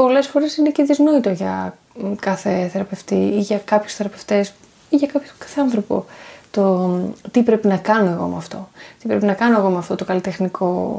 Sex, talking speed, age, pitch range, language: female, 190 wpm, 20-39, 190-245 Hz, Greek